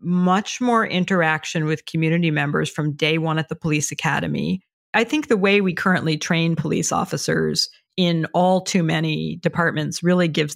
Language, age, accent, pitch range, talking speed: English, 40-59, American, 155-180 Hz, 165 wpm